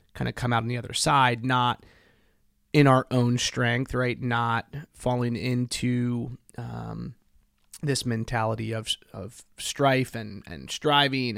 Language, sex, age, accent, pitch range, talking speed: English, male, 30-49, American, 115-135 Hz, 135 wpm